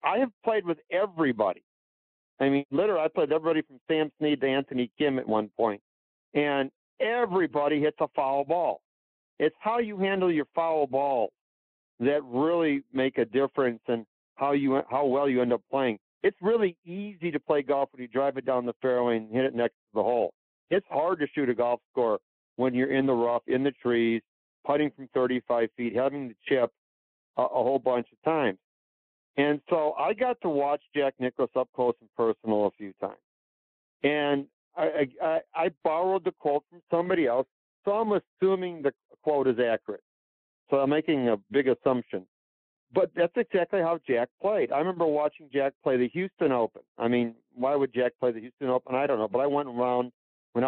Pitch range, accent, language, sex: 120-155 Hz, American, English, male